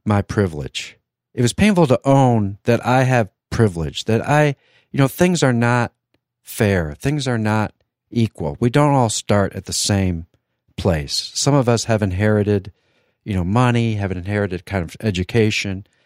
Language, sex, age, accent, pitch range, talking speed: English, male, 50-69, American, 100-130 Hz, 165 wpm